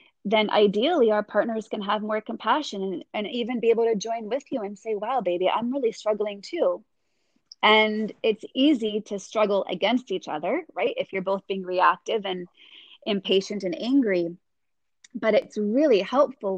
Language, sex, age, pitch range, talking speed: English, female, 20-39, 190-230 Hz, 170 wpm